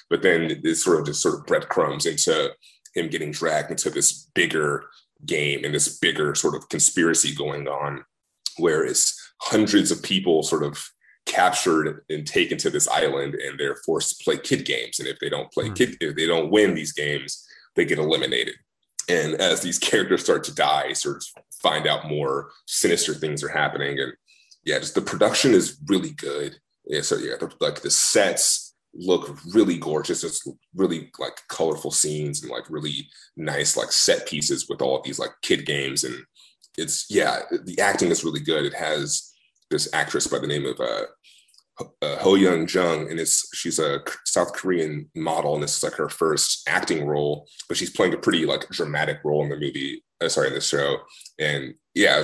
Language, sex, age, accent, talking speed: English, male, 30-49, American, 190 wpm